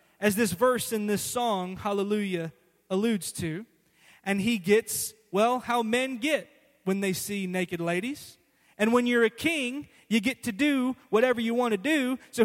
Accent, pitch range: American, 180-250 Hz